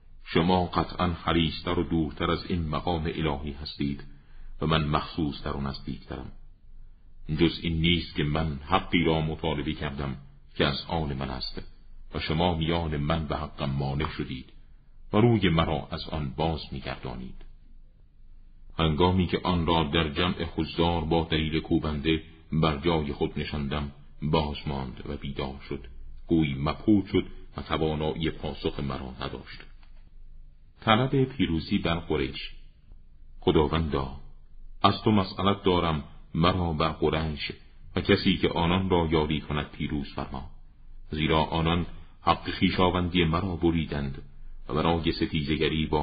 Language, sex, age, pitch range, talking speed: Persian, male, 50-69, 70-85 Hz, 135 wpm